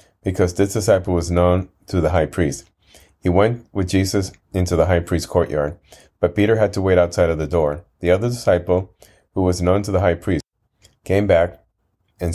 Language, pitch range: English, 85-100 Hz